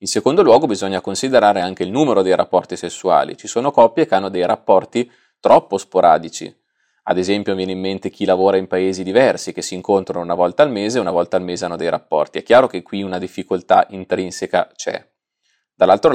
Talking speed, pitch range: 200 wpm, 90-105 Hz